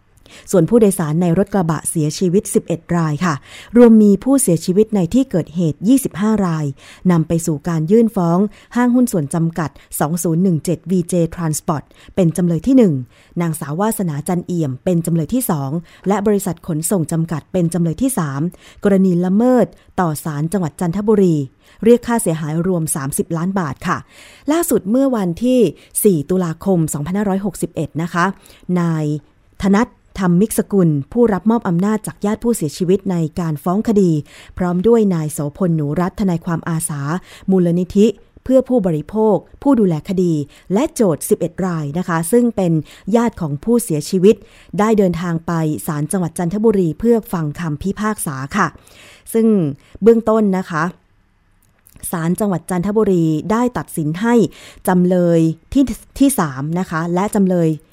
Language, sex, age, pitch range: Thai, female, 20-39, 160-210 Hz